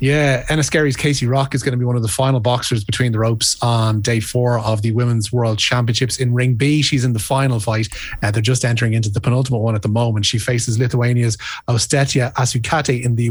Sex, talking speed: male, 225 wpm